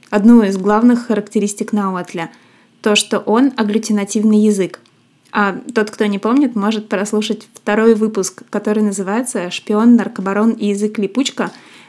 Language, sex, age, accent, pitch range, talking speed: Russian, female, 20-39, native, 205-235 Hz, 130 wpm